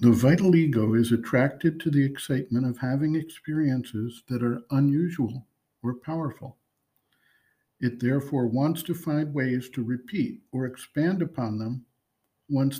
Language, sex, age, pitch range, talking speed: English, male, 60-79, 125-155 Hz, 135 wpm